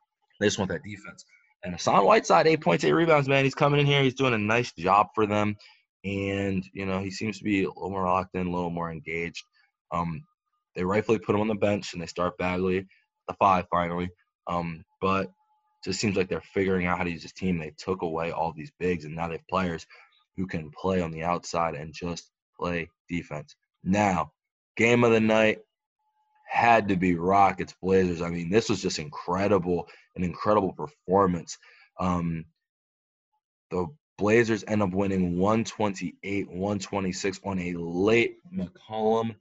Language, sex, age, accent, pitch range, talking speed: English, male, 20-39, American, 90-120 Hz, 185 wpm